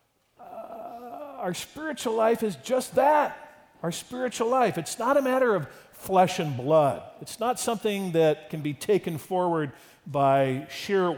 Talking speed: 145 wpm